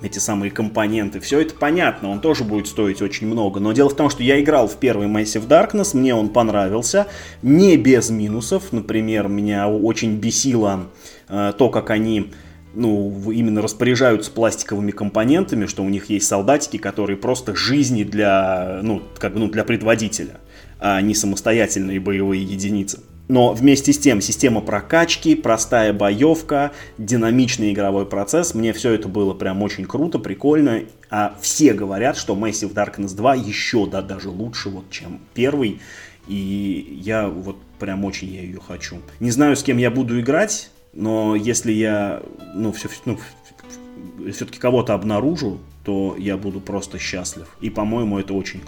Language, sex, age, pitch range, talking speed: Russian, male, 20-39, 100-120 Hz, 155 wpm